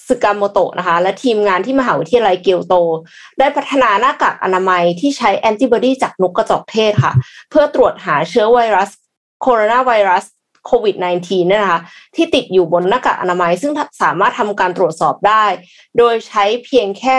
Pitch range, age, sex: 185-250 Hz, 20-39, female